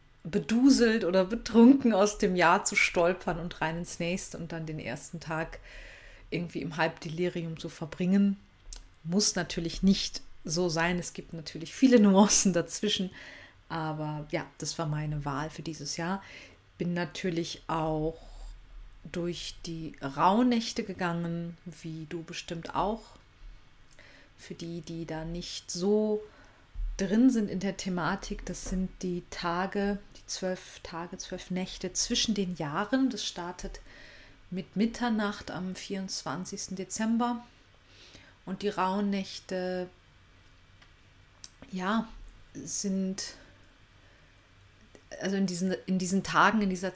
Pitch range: 165-195 Hz